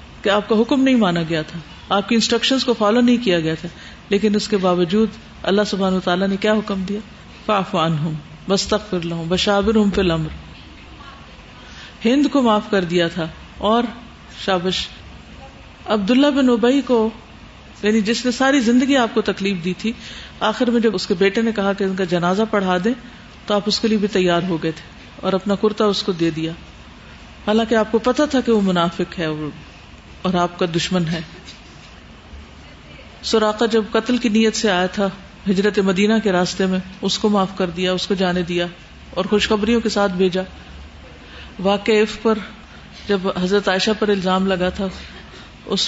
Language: Urdu